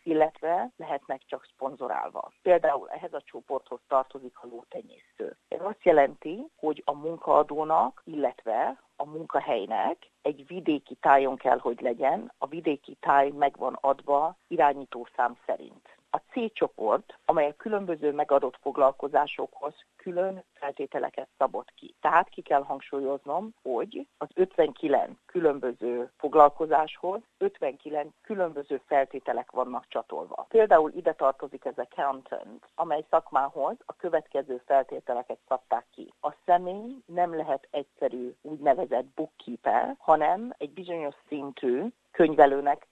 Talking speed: 115 wpm